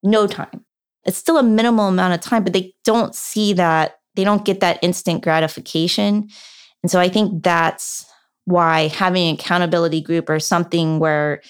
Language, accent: English, American